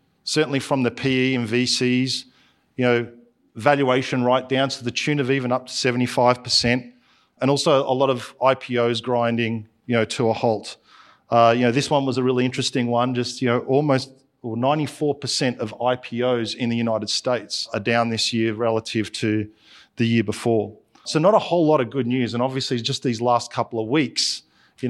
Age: 40-59